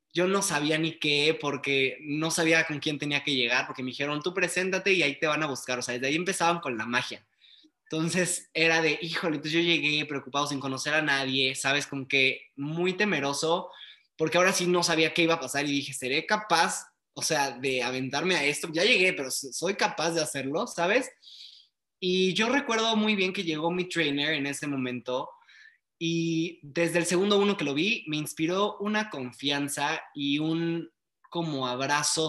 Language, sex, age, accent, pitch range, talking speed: Spanish, male, 20-39, Mexican, 140-175 Hz, 195 wpm